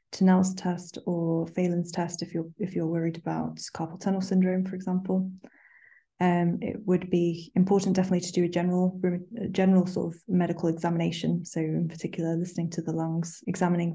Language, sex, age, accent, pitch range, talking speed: English, female, 20-39, British, 170-190 Hz, 170 wpm